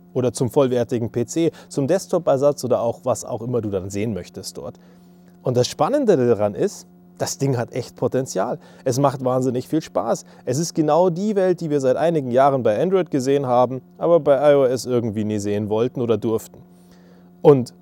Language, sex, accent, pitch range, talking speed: German, male, German, 110-150 Hz, 185 wpm